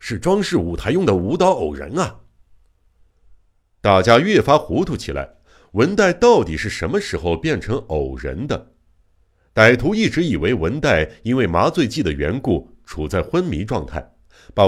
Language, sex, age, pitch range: Chinese, male, 60-79, 80-125 Hz